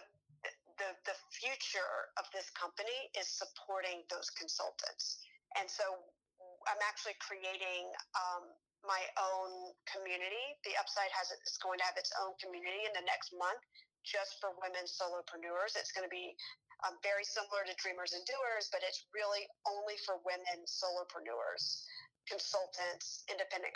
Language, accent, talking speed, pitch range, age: English, American, 145 wpm, 185-225 Hz, 40-59